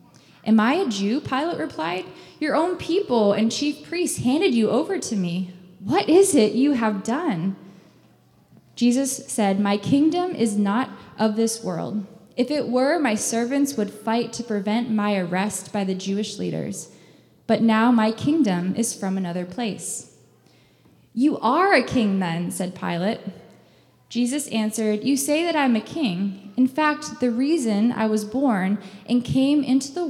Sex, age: female, 10-29